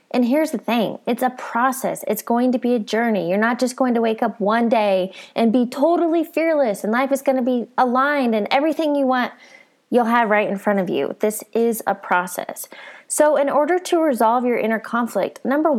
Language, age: English, 20-39